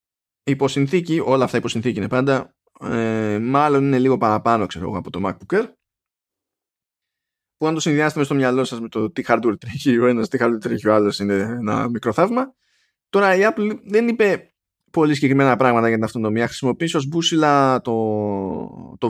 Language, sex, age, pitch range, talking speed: Greek, male, 20-39, 115-155 Hz, 175 wpm